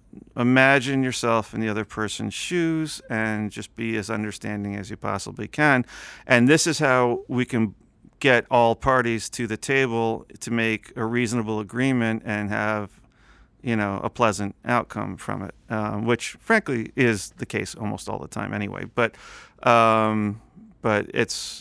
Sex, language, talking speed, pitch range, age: male, English, 160 wpm, 105-125 Hz, 40-59